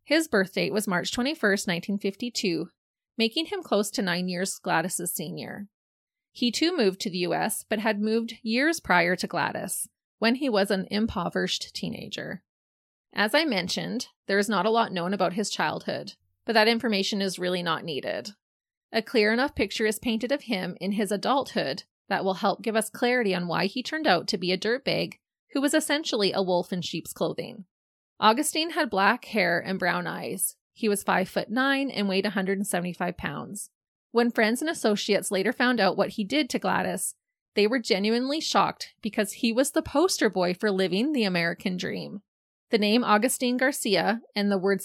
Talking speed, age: 180 wpm, 30-49